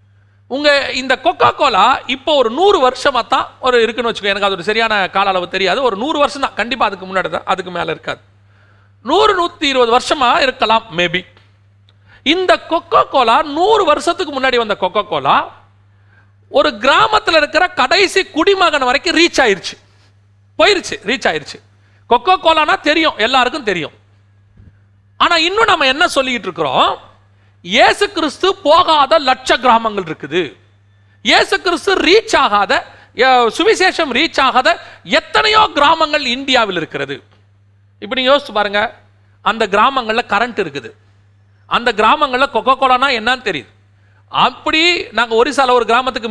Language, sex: Tamil, male